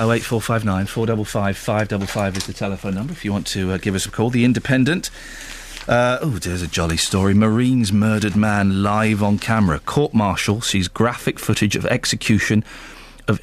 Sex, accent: male, British